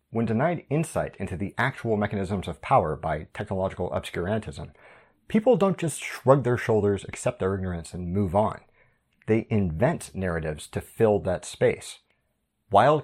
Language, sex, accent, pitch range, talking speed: English, male, American, 95-135 Hz, 145 wpm